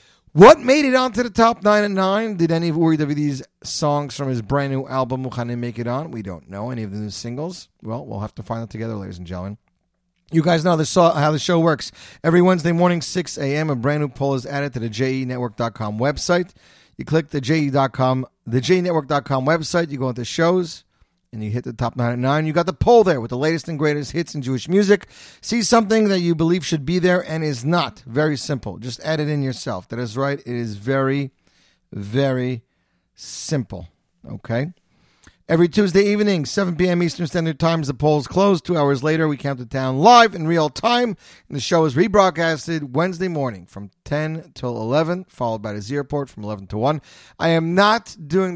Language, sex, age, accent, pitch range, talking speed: English, male, 30-49, American, 125-170 Hz, 210 wpm